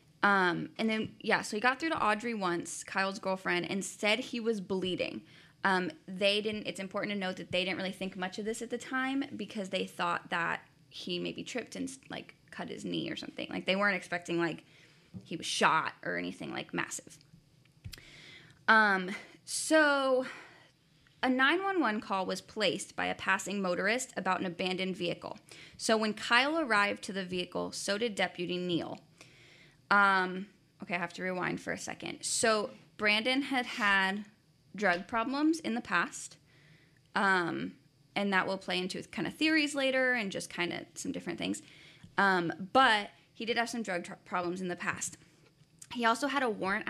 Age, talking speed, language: 10-29, 180 wpm, English